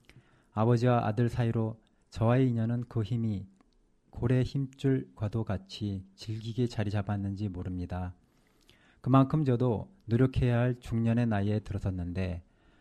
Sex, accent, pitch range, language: male, native, 95-120 Hz, Korean